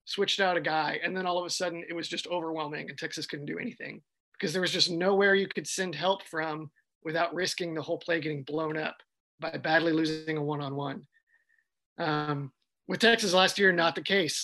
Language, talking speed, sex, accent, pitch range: English, 210 wpm, male, American, 155-185 Hz